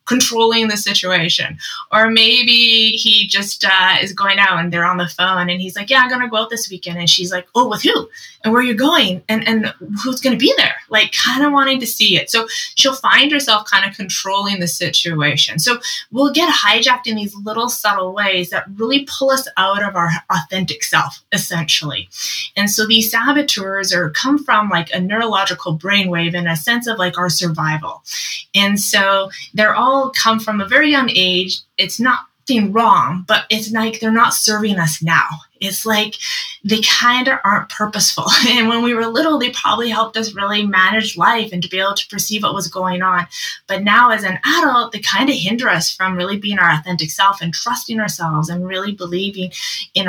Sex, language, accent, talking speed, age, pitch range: female, English, American, 205 wpm, 20-39, 180-230 Hz